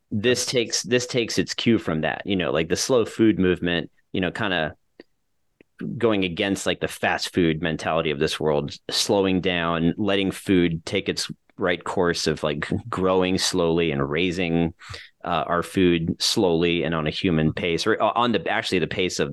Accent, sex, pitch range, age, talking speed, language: American, male, 80-100 Hz, 30-49, 185 wpm, English